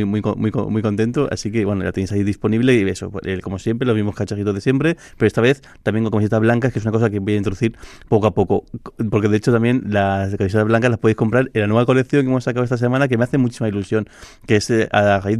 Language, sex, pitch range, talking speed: Spanish, male, 100-115 Hz, 275 wpm